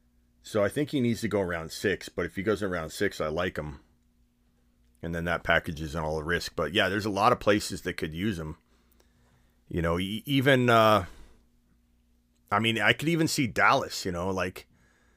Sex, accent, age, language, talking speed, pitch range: male, American, 30-49, English, 200 wpm, 80-115 Hz